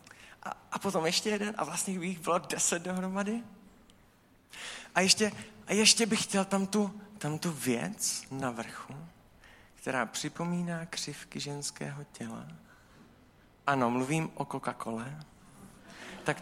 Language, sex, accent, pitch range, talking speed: Czech, male, native, 175-245 Hz, 130 wpm